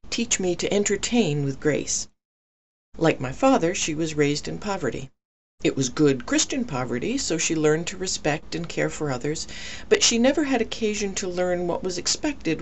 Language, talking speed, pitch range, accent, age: English, 180 wpm, 130-165 Hz, American, 50-69